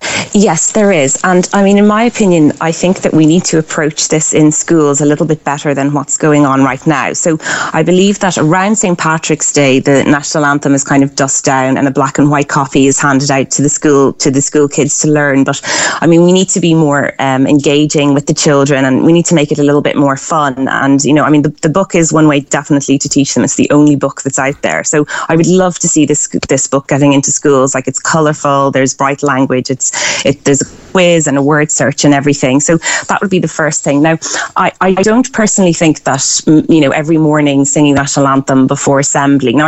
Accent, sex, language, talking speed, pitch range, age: Irish, female, English, 245 wpm, 140-165 Hz, 20-39